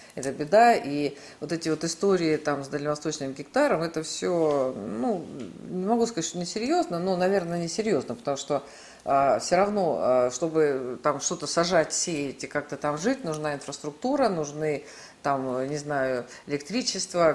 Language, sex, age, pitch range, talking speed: Russian, female, 50-69, 145-185 Hz, 150 wpm